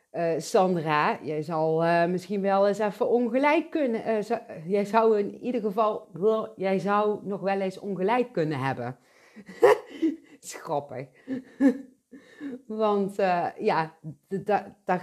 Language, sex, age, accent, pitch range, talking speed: Dutch, female, 40-59, Dutch, 155-215 Hz, 115 wpm